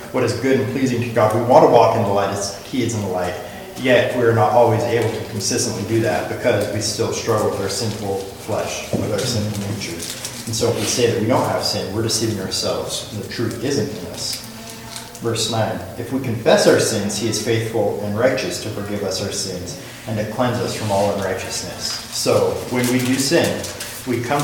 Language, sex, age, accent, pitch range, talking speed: English, male, 30-49, American, 110-125 Hz, 225 wpm